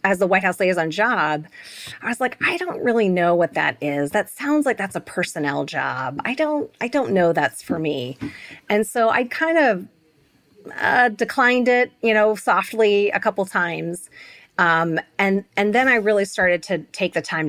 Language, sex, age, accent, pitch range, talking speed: English, female, 30-49, American, 170-230 Hz, 190 wpm